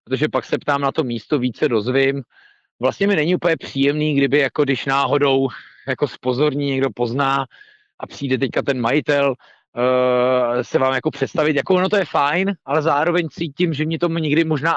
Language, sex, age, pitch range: Czech, male, 40-59, 125-155 Hz